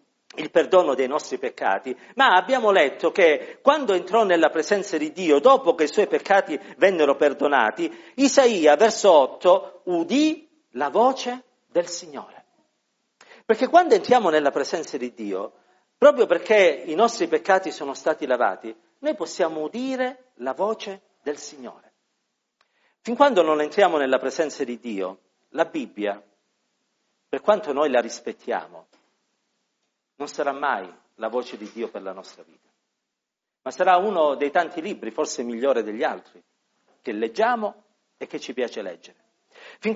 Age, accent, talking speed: 50-69, native, 145 wpm